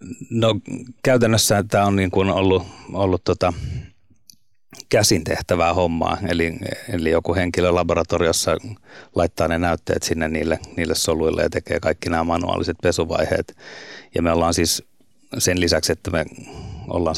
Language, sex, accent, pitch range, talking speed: Finnish, male, native, 85-95 Hz, 135 wpm